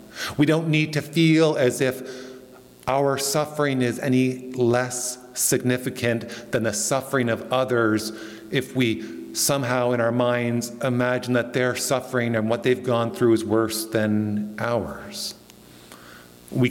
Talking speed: 135 wpm